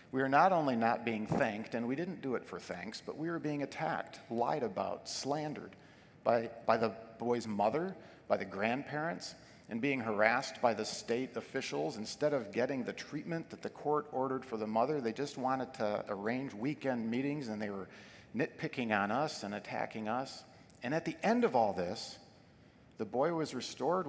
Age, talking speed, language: 50-69, 190 wpm, English